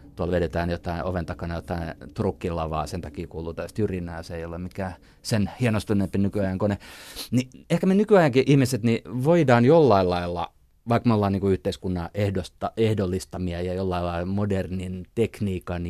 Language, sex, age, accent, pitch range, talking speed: Finnish, male, 30-49, native, 85-110 Hz, 160 wpm